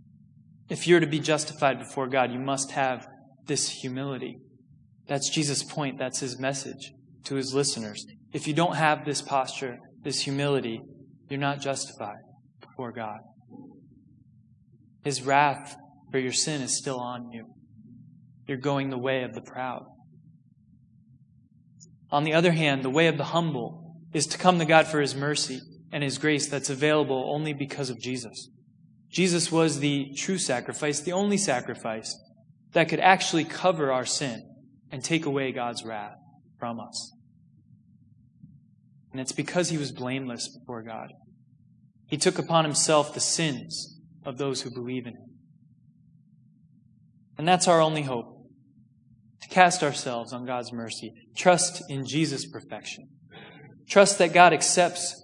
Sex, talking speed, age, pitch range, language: male, 150 wpm, 20-39, 130-155 Hz, English